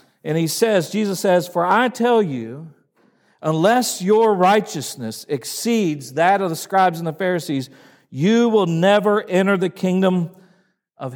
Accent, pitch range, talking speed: American, 155-195 Hz, 145 wpm